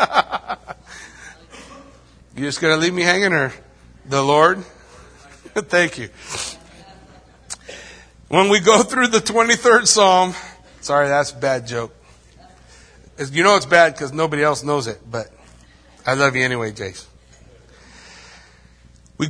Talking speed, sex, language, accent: 130 wpm, male, English, American